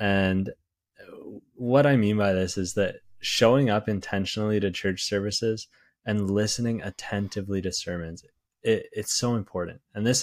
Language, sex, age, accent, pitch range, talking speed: English, male, 20-39, American, 95-110 Hz, 140 wpm